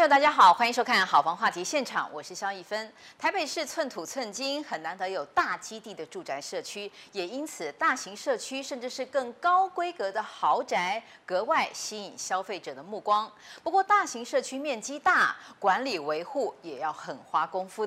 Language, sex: Chinese, female